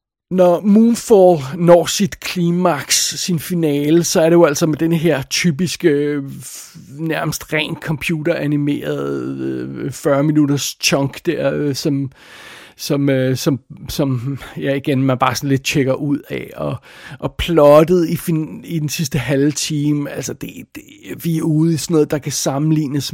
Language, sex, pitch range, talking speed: Danish, male, 145-170 Hz, 150 wpm